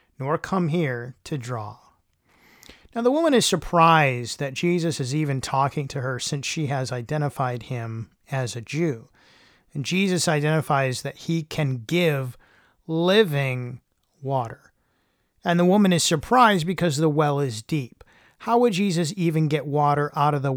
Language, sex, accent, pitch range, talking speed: English, male, American, 135-175 Hz, 155 wpm